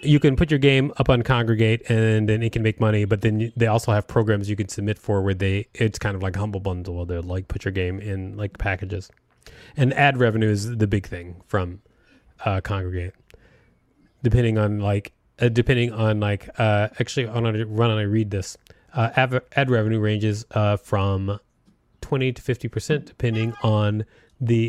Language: English